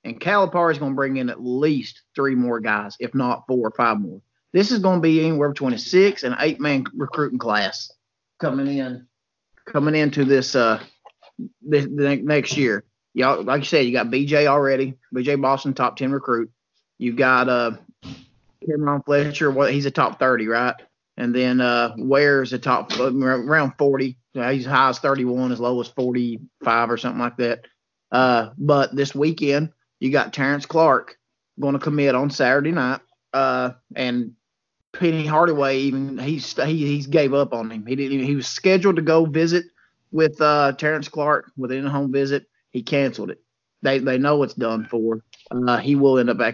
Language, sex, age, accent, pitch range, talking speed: English, male, 30-49, American, 125-145 Hz, 190 wpm